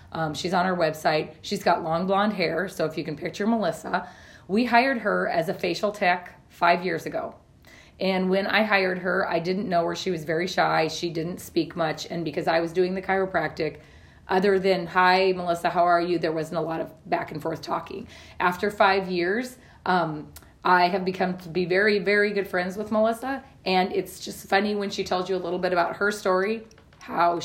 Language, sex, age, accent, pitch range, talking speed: English, female, 30-49, American, 170-200 Hz, 210 wpm